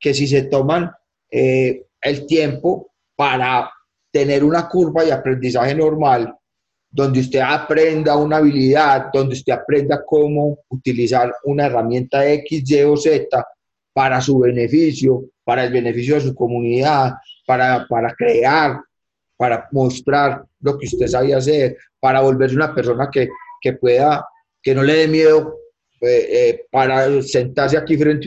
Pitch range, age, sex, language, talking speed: 130-150 Hz, 30-49, male, Spanish, 140 wpm